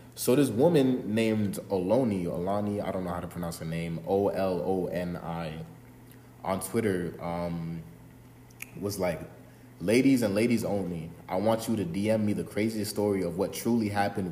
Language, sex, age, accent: English, male, 20-39, American